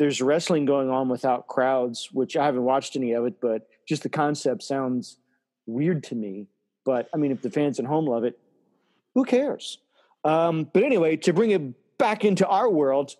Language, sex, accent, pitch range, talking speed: English, male, American, 130-175 Hz, 195 wpm